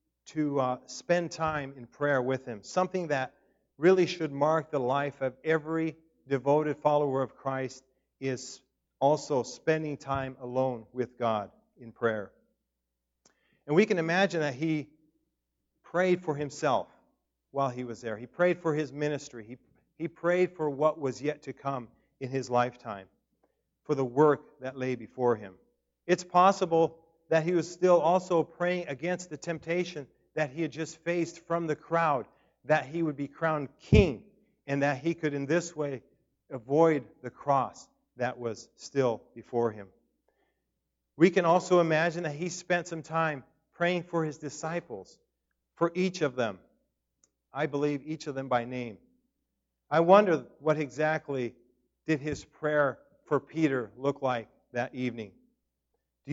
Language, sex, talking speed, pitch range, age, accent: English, male, 155 wpm, 130-165 Hz, 50-69, American